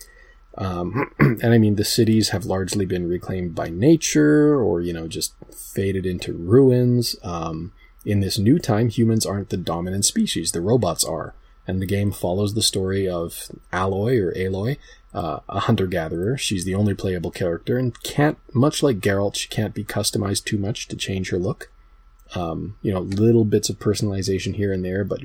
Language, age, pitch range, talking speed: English, 20-39, 90-115 Hz, 185 wpm